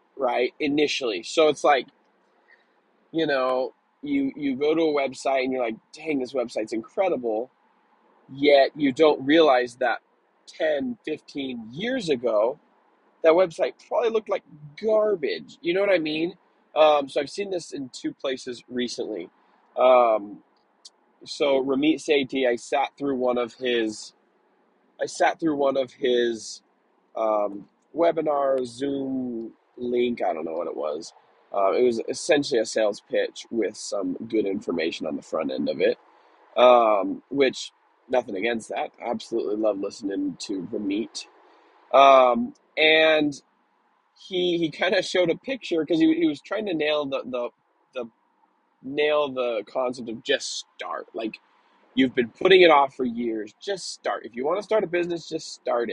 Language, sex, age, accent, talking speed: English, male, 20-39, American, 160 wpm